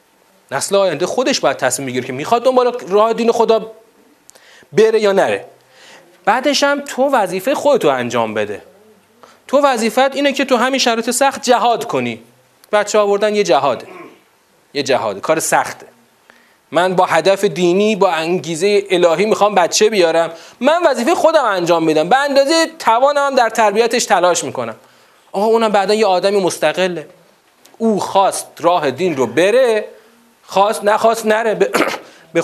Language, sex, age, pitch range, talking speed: Persian, male, 30-49, 185-265 Hz, 145 wpm